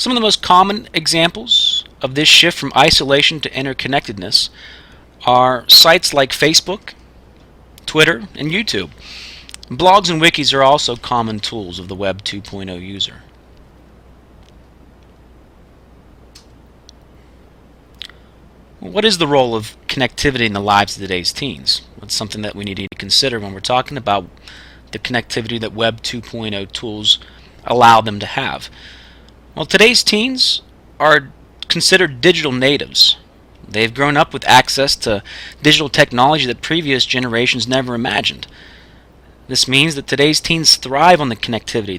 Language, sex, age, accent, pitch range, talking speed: English, male, 30-49, American, 100-145 Hz, 135 wpm